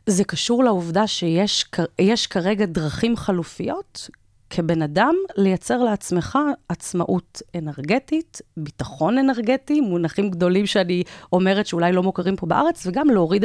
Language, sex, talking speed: Hebrew, female, 115 wpm